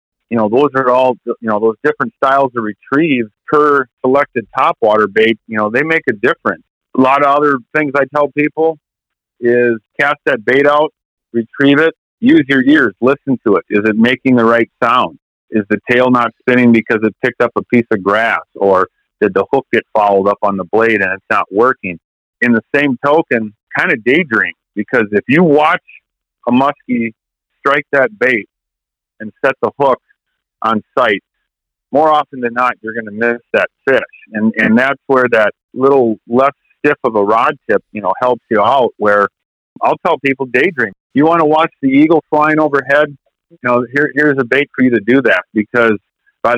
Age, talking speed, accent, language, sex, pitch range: 40-59, 195 wpm, American, English, male, 110-140 Hz